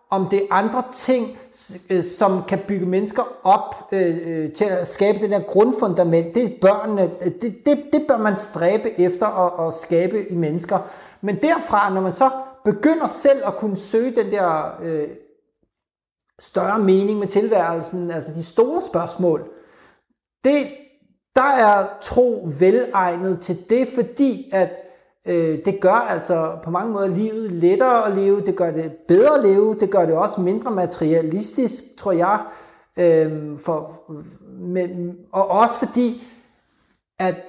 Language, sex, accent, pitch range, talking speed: Danish, male, native, 175-220 Hz, 140 wpm